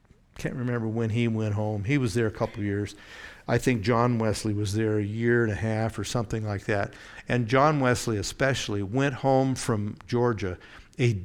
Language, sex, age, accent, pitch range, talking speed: English, male, 60-79, American, 105-125 Hz, 200 wpm